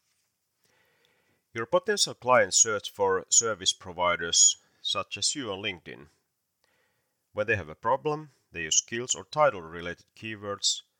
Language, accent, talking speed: English, Finnish, 130 wpm